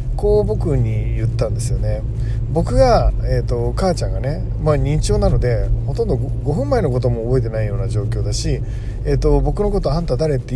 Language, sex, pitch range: Japanese, male, 120-155 Hz